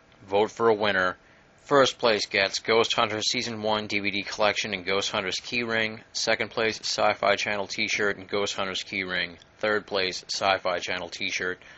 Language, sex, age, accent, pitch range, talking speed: English, male, 30-49, American, 90-110 Hz, 170 wpm